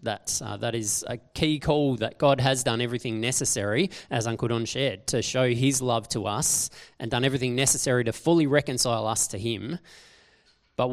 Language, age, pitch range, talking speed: English, 20-39, 110-135 Hz, 185 wpm